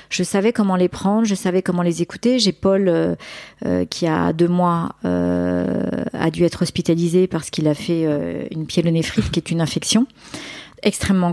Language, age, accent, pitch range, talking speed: French, 40-59, French, 165-205 Hz, 190 wpm